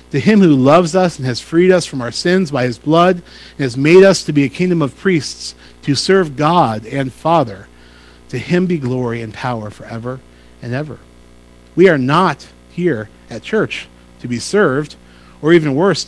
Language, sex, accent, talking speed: English, male, American, 190 wpm